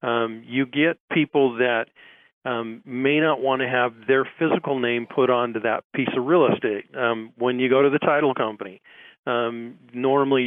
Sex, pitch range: male, 125-155 Hz